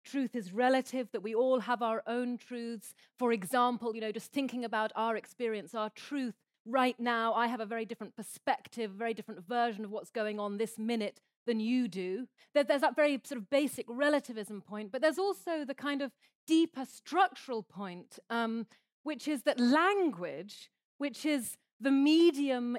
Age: 30-49